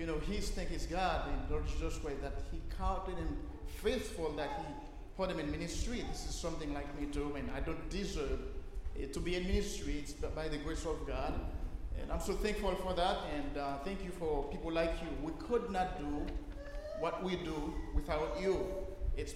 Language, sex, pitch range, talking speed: English, male, 150-185 Hz, 200 wpm